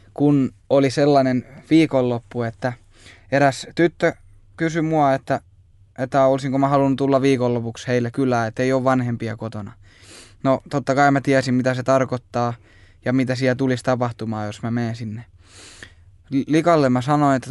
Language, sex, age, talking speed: Finnish, male, 20-39, 150 wpm